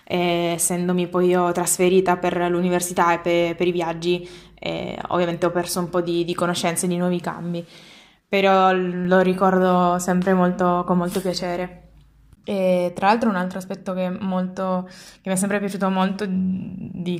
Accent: native